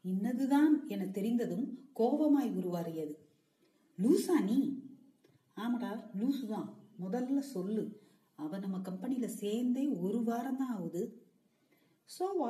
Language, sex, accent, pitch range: Tamil, female, native, 190-265 Hz